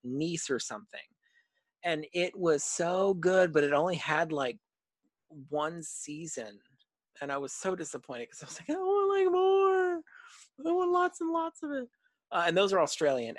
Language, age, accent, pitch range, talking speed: English, 40-59, American, 140-200 Hz, 180 wpm